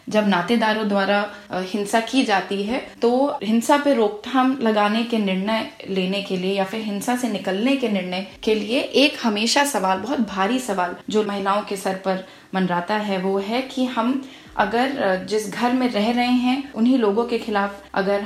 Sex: female